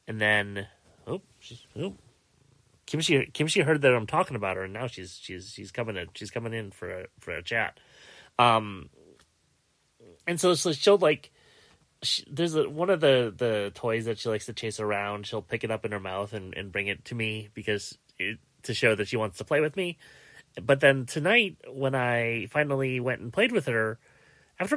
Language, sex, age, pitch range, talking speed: English, male, 30-49, 100-130 Hz, 210 wpm